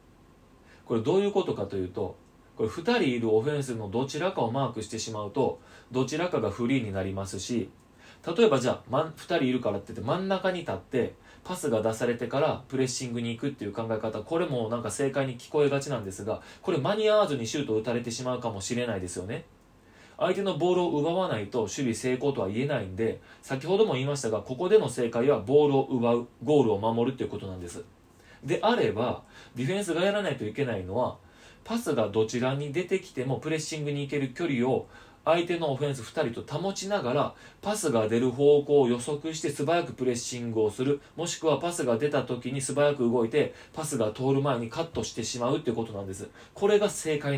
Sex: male